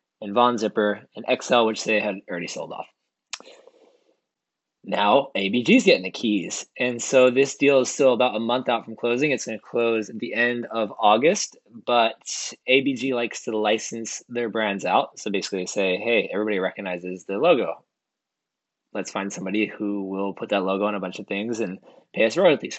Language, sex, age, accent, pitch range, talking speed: English, male, 20-39, American, 105-130 Hz, 185 wpm